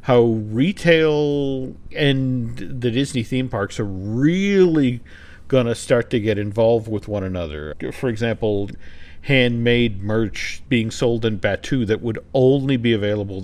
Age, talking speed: 50-69, 140 wpm